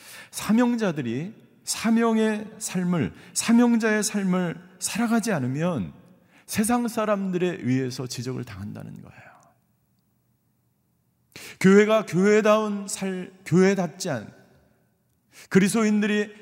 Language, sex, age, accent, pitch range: Korean, male, 40-59, native, 140-205 Hz